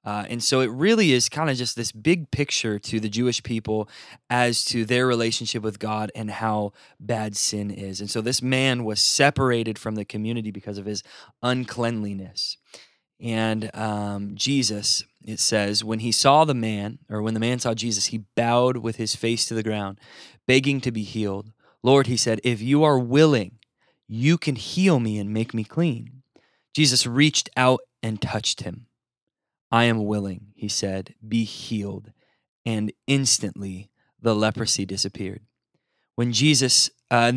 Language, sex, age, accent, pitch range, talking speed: English, male, 20-39, American, 105-125 Hz, 165 wpm